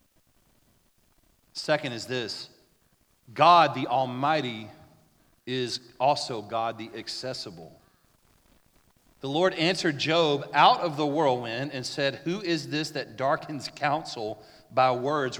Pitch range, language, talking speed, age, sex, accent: 125-165 Hz, English, 115 wpm, 40-59, male, American